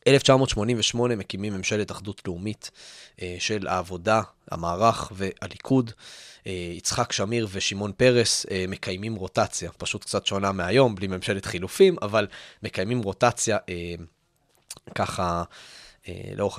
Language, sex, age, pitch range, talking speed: Hebrew, male, 20-39, 95-120 Hz, 100 wpm